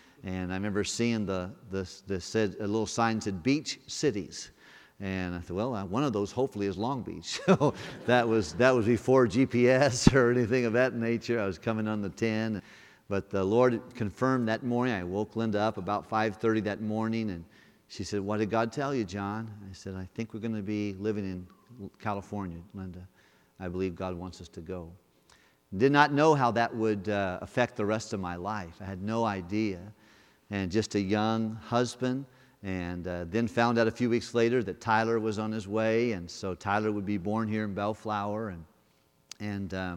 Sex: male